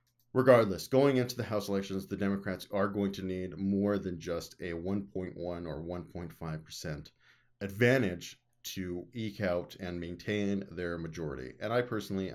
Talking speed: 145 wpm